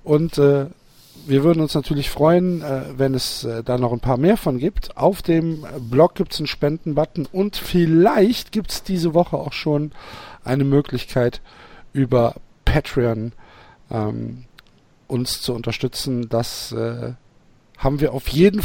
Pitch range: 125-170 Hz